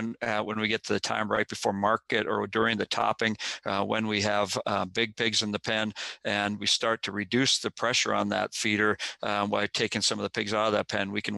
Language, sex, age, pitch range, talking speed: English, male, 50-69, 105-115 Hz, 250 wpm